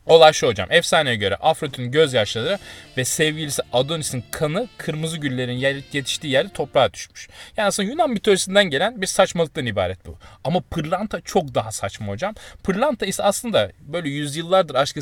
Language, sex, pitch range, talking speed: Turkish, male, 125-180 Hz, 150 wpm